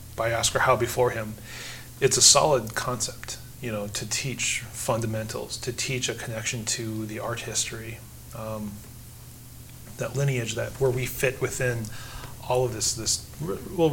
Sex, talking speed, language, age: male, 155 wpm, English, 30-49